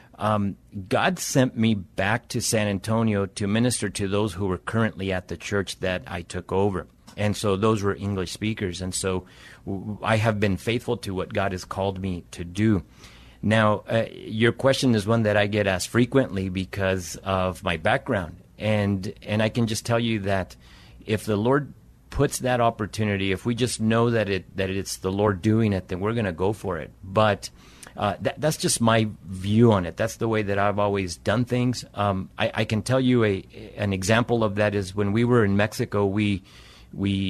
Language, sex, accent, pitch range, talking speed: English, male, American, 95-115 Hz, 200 wpm